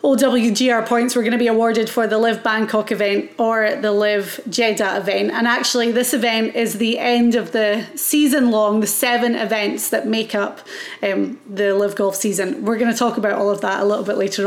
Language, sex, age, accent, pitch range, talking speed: English, female, 30-49, British, 220-265 Hz, 210 wpm